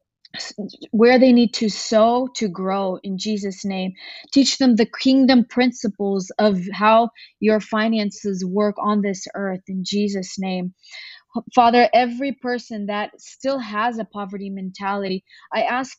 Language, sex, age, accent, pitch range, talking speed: English, female, 20-39, Canadian, 200-240 Hz, 140 wpm